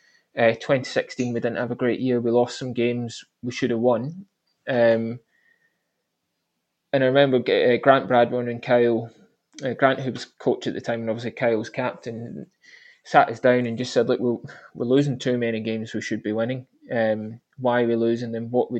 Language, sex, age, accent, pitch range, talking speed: English, male, 20-39, British, 120-135 Hz, 200 wpm